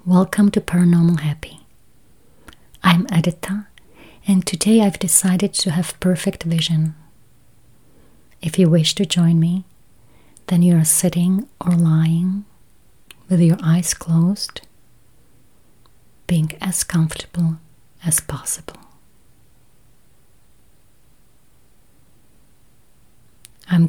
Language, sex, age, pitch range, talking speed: English, female, 30-49, 155-180 Hz, 90 wpm